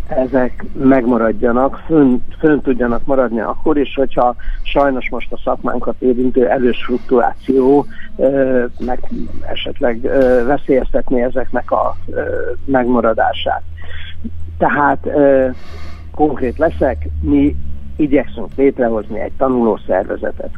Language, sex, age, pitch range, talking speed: Hungarian, male, 60-79, 115-135 Hz, 85 wpm